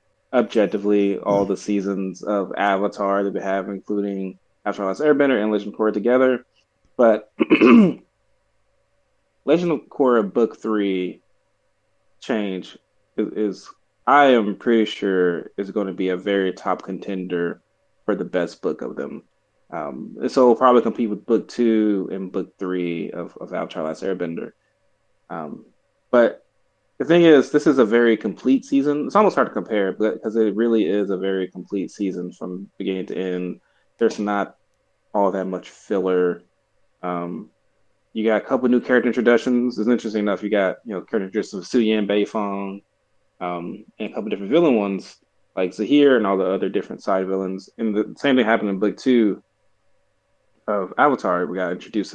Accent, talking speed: American, 165 wpm